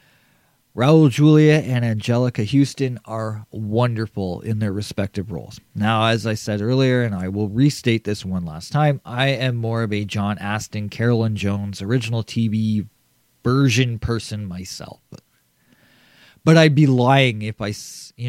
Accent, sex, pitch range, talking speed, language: American, male, 110-135 Hz, 150 wpm, English